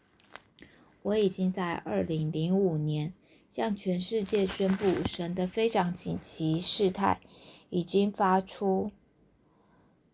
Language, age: Chinese, 20-39